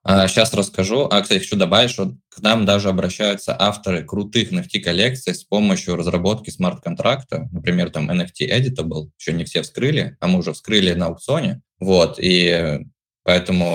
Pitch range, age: 90-105 Hz, 20-39